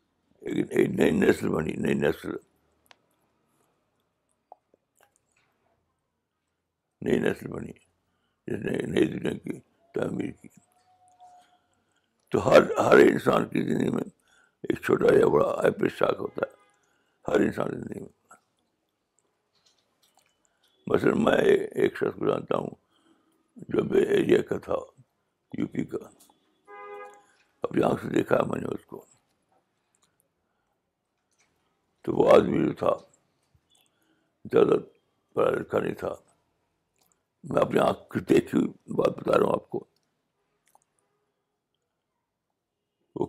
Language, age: Urdu, 60-79